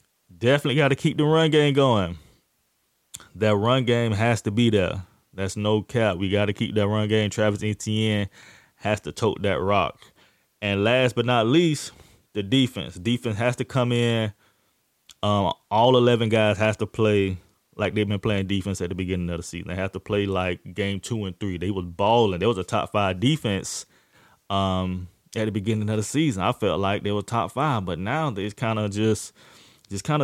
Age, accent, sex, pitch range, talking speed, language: 20-39, American, male, 100-120 Hz, 200 wpm, English